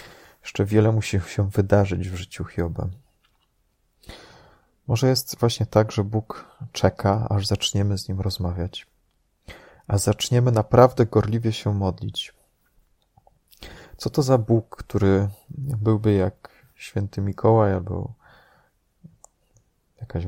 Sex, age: male, 30-49